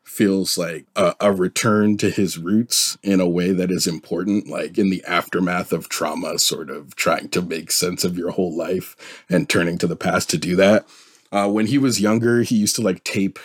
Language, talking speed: English, 215 wpm